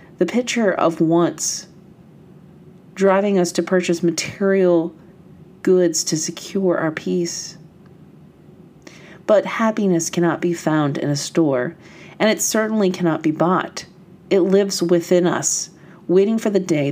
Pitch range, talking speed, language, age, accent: 160-185 Hz, 130 wpm, English, 40-59, American